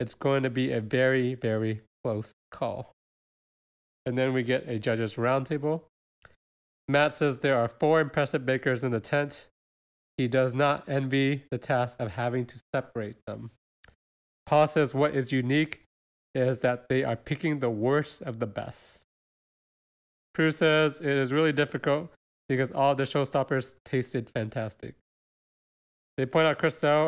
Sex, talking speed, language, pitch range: male, 150 wpm, English, 115-145 Hz